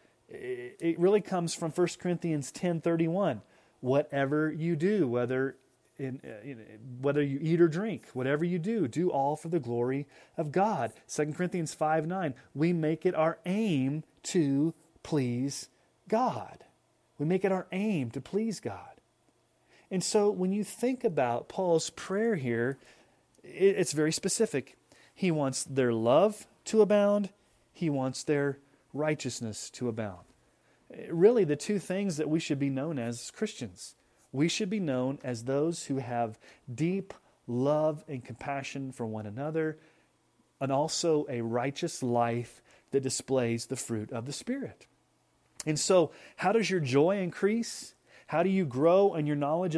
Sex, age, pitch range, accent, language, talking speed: male, 30-49, 135-180 Hz, American, English, 150 wpm